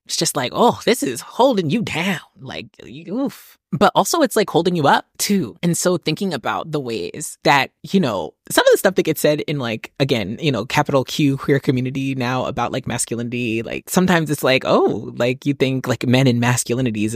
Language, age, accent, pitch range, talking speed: English, 20-39, American, 115-150 Hz, 210 wpm